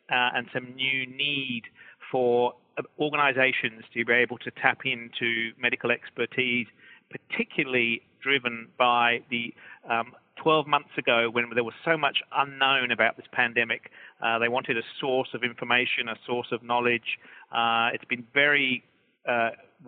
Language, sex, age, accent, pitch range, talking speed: English, male, 40-59, British, 115-130 Hz, 145 wpm